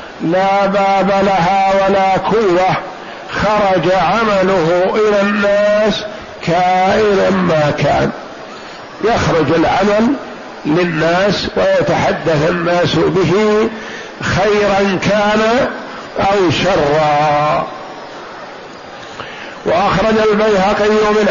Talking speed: 70 wpm